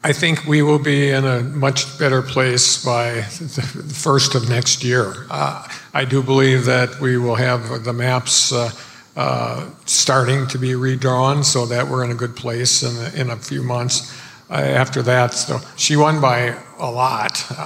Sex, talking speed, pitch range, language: male, 185 wpm, 125-140 Hz, English